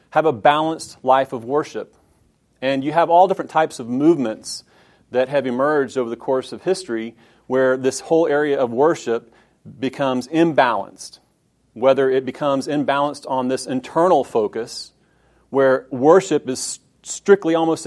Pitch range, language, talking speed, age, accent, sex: 130-155 Hz, English, 145 wpm, 40-59, American, male